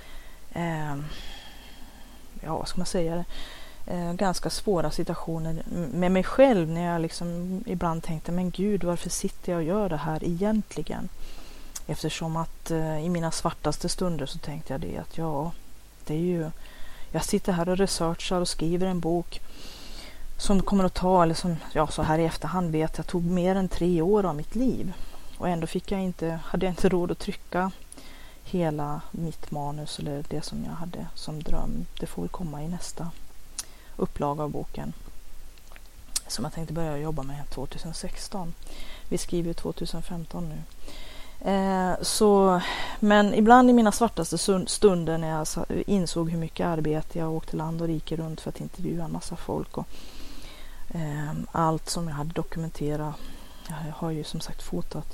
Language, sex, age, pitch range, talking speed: Swedish, female, 30-49, 155-180 Hz, 165 wpm